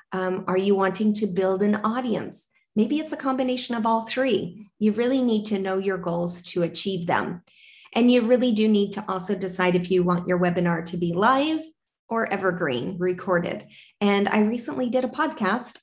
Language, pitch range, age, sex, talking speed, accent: English, 180-220 Hz, 20-39, female, 190 wpm, American